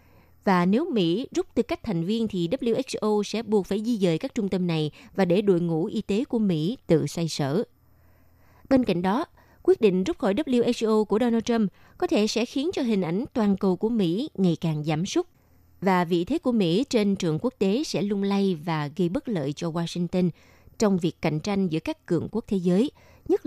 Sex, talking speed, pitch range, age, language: female, 215 wpm, 170-230 Hz, 20-39, Vietnamese